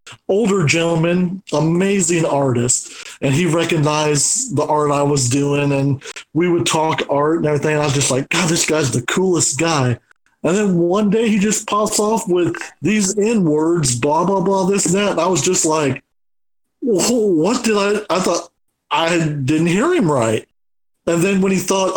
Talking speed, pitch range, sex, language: 180 wpm, 145-185 Hz, male, English